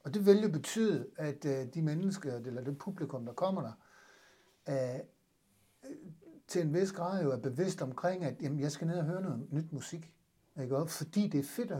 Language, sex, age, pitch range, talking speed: Danish, male, 60-79, 135-175 Hz, 205 wpm